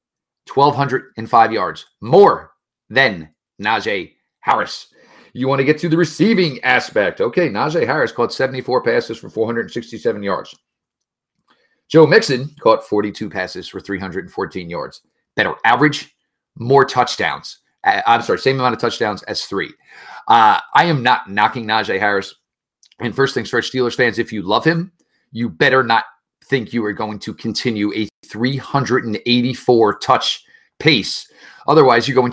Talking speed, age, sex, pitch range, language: 140 wpm, 40-59, male, 100-130 Hz, English